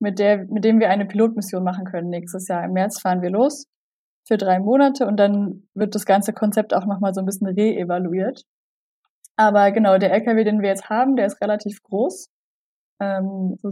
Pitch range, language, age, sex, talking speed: 190-225 Hz, German, 20-39, female, 195 wpm